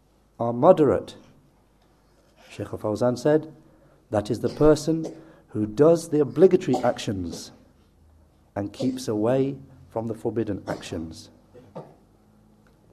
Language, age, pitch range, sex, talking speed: English, 60-79, 105-145 Hz, male, 95 wpm